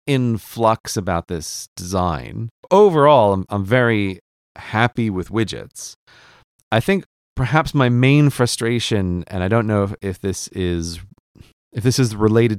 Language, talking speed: English, 145 wpm